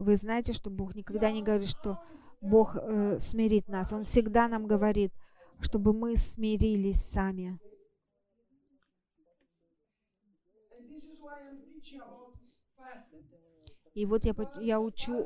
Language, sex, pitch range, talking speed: English, female, 205-250 Hz, 100 wpm